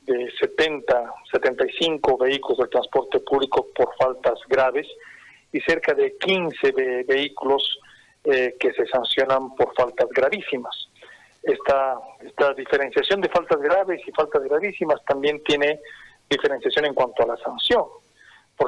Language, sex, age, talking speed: Spanish, male, 40-59, 130 wpm